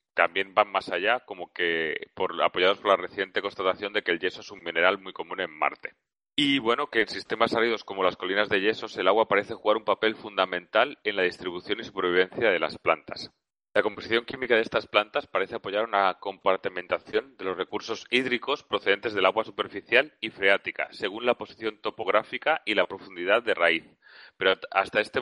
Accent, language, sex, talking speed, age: Spanish, Spanish, male, 195 wpm, 30-49